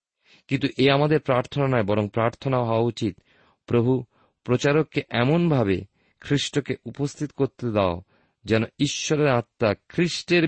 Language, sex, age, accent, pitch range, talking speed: Bengali, male, 40-59, native, 100-140 Hz, 115 wpm